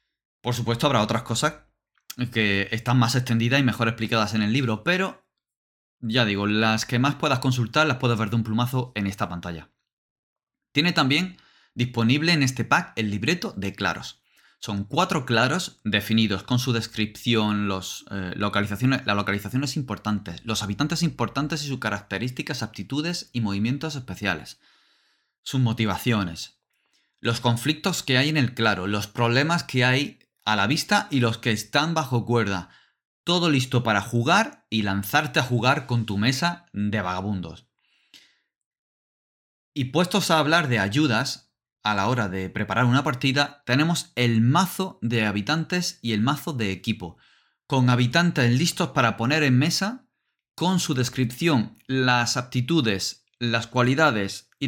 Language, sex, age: Spanish, male, 20-39